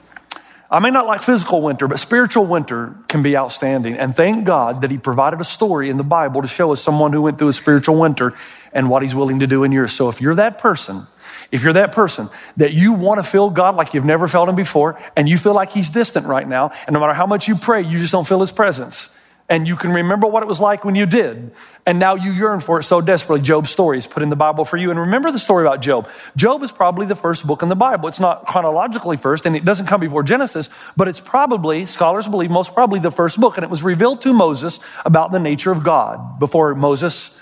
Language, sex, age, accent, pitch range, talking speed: English, male, 40-59, American, 150-200 Hz, 255 wpm